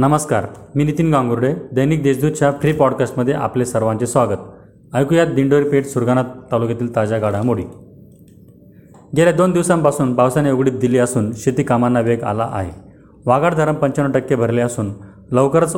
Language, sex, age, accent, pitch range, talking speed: Marathi, male, 30-49, native, 115-140 Hz, 135 wpm